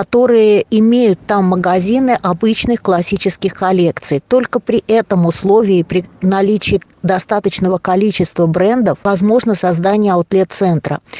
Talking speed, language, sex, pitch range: 100 wpm, Russian, female, 185-220 Hz